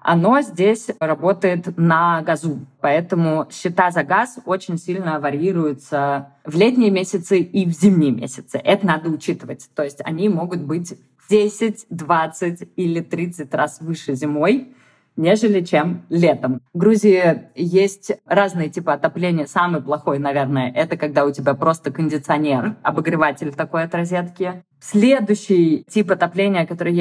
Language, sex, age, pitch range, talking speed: Russian, female, 20-39, 155-195 Hz, 135 wpm